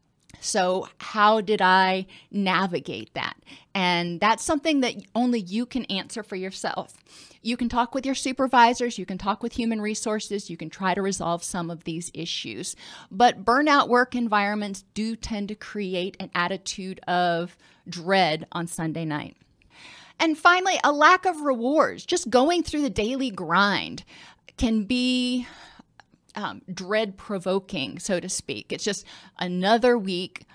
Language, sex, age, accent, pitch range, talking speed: English, female, 30-49, American, 190-240 Hz, 150 wpm